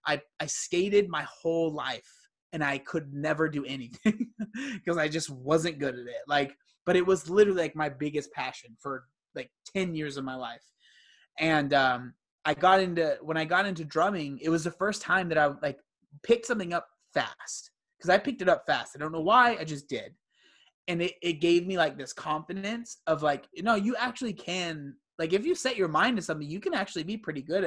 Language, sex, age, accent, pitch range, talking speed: English, male, 20-39, American, 145-185 Hz, 215 wpm